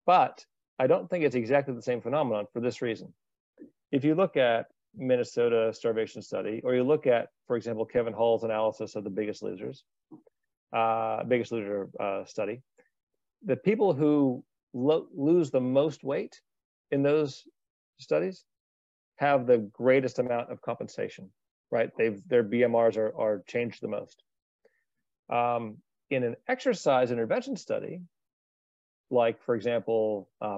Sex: male